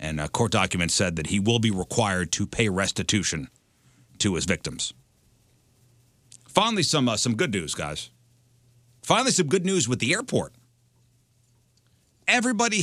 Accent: American